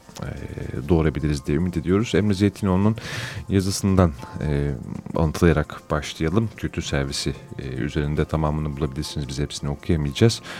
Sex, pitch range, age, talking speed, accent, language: male, 75-95 Hz, 30-49, 95 wpm, native, Turkish